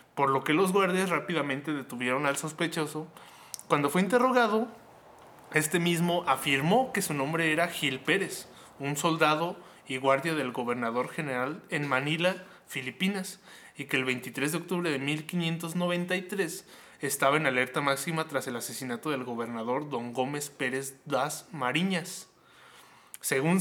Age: 20-39